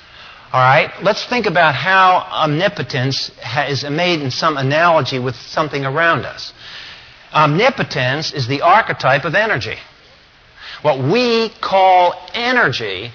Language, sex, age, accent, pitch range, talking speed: English, male, 50-69, American, 135-185 Hz, 120 wpm